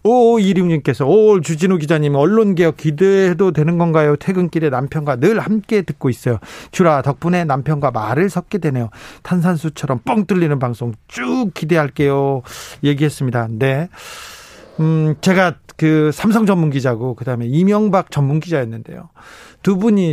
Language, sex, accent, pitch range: Korean, male, native, 135-180 Hz